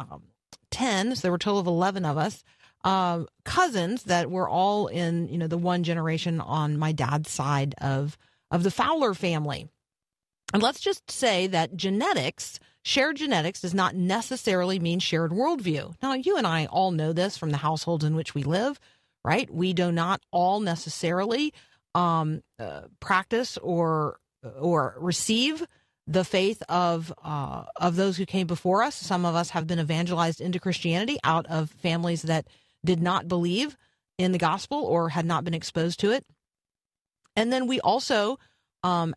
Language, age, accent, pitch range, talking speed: English, 40-59, American, 160-200 Hz, 170 wpm